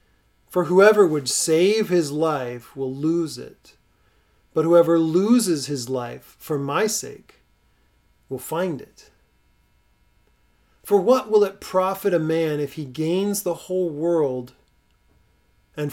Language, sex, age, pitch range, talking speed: English, male, 40-59, 125-175 Hz, 130 wpm